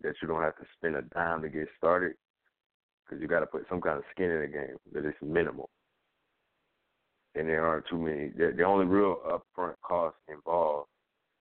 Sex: male